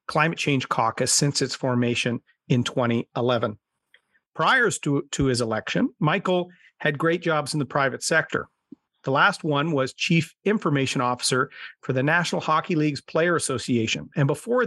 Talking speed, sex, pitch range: 150 wpm, male, 135-165 Hz